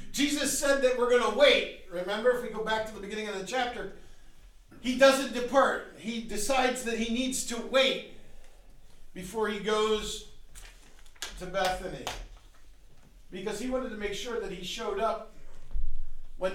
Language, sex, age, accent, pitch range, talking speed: English, male, 50-69, American, 180-250 Hz, 160 wpm